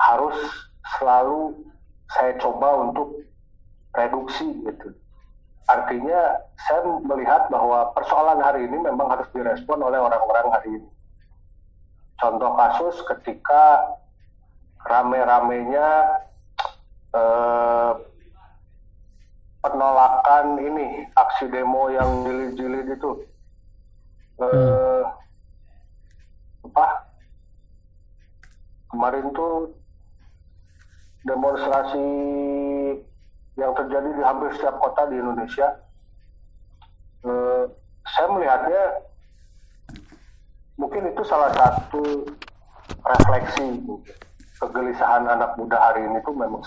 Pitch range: 90-140 Hz